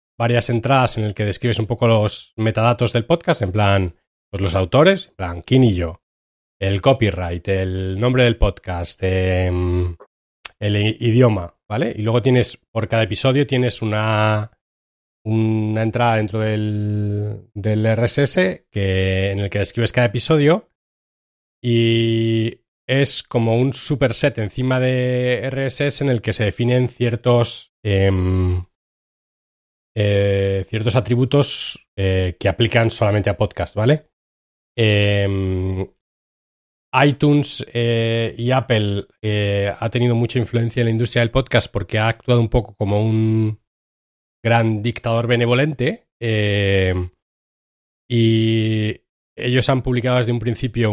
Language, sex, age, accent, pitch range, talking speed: Spanish, male, 30-49, Spanish, 100-125 Hz, 125 wpm